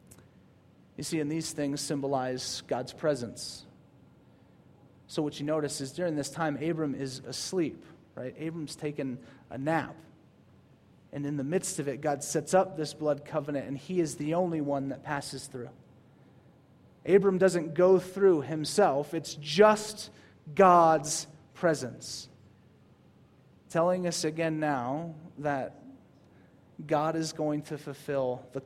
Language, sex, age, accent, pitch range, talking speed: English, male, 30-49, American, 140-165 Hz, 135 wpm